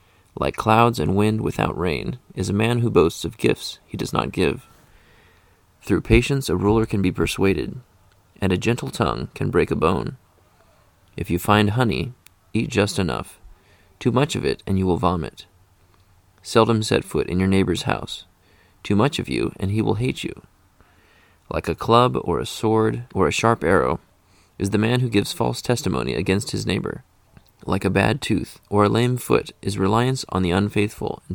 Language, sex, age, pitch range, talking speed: English, male, 30-49, 90-110 Hz, 185 wpm